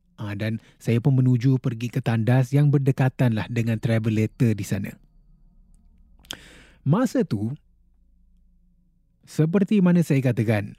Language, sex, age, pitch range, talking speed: Malay, male, 30-49, 115-175 Hz, 115 wpm